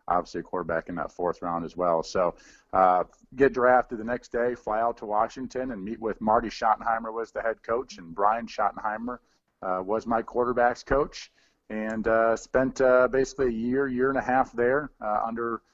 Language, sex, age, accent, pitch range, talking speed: English, male, 40-59, American, 110-130 Hz, 200 wpm